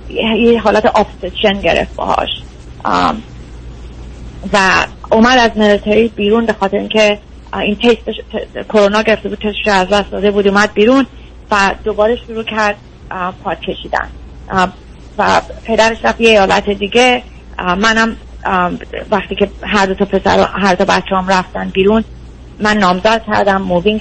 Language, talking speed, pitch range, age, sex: Persian, 135 wpm, 185-215 Hz, 30-49, female